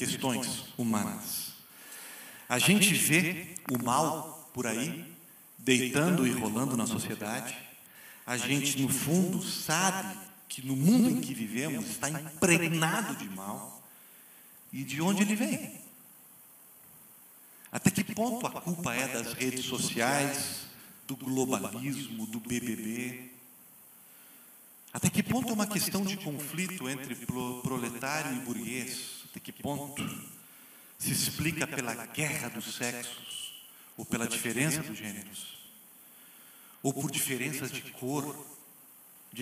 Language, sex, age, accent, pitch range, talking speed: Portuguese, male, 50-69, Brazilian, 125-190 Hz, 120 wpm